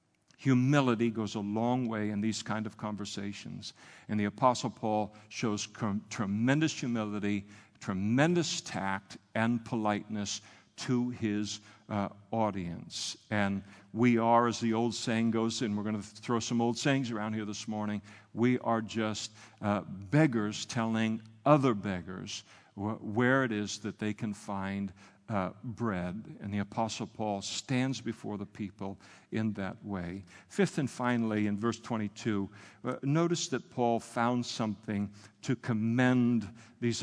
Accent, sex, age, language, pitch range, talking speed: American, male, 50-69, English, 105-120 Hz, 145 wpm